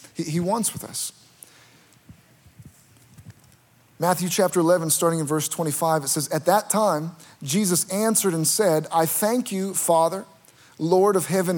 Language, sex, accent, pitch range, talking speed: English, male, American, 155-200 Hz, 140 wpm